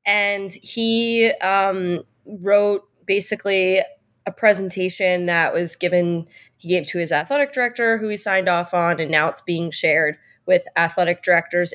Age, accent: 20-39, American